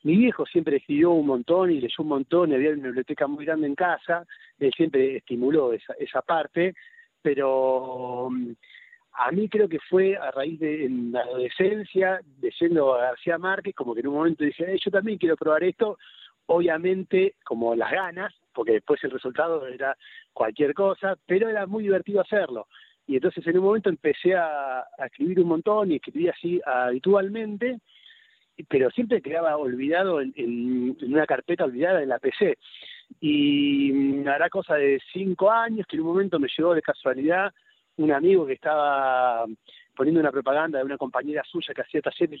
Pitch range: 155-245 Hz